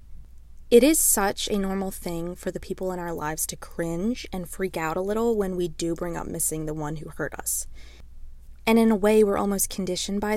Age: 20-39